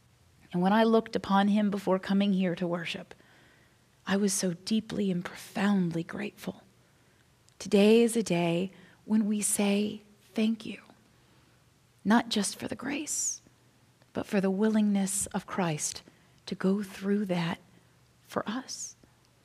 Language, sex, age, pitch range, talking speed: English, female, 30-49, 195-230 Hz, 135 wpm